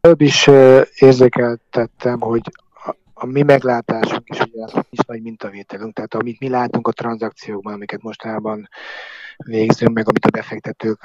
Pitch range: 110-135 Hz